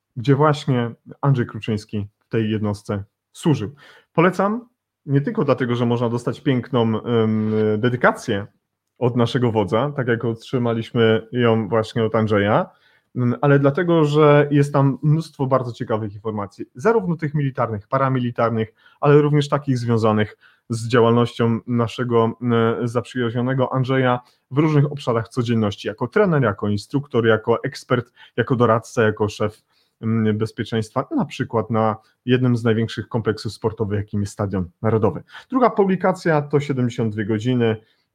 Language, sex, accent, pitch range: Polish, male, native, 110-130 Hz